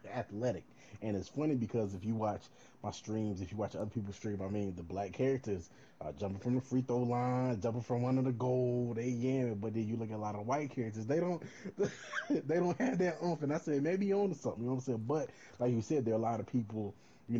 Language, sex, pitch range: English, male, 100-125 Hz